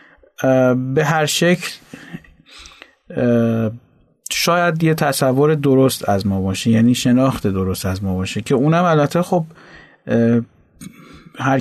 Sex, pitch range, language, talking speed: male, 120-150 Hz, Persian, 110 wpm